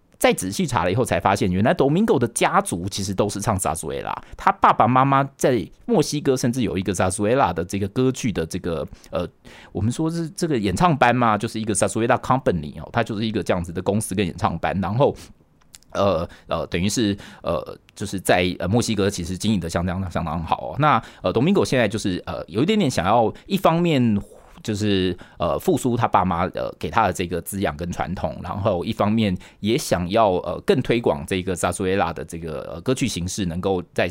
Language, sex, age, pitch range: Chinese, male, 30-49, 95-135 Hz